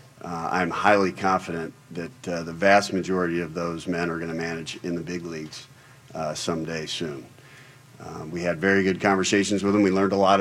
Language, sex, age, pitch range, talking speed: English, male, 40-59, 85-100 Hz, 200 wpm